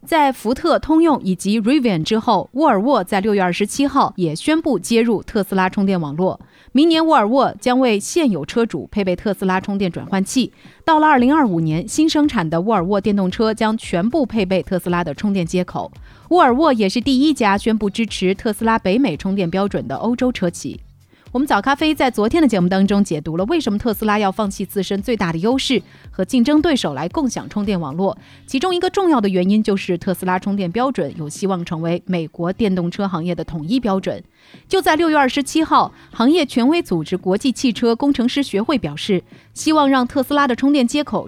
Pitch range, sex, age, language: 185-260 Hz, female, 30-49, Chinese